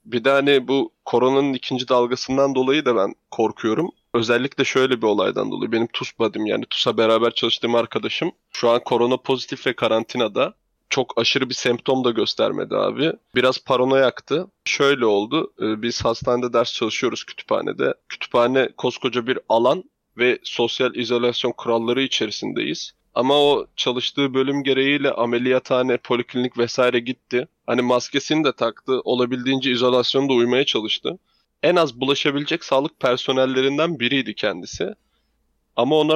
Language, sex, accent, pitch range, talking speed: Turkish, male, native, 120-135 Hz, 135 wpm